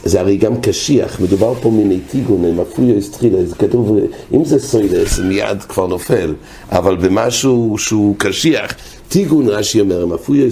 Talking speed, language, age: 125 wpm, English, 60-79